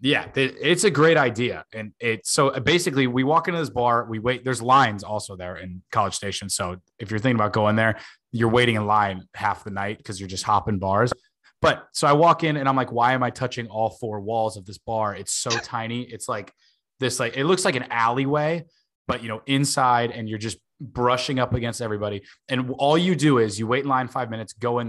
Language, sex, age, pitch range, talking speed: English, male, 20-39, 105-130 Hz, 230 wpm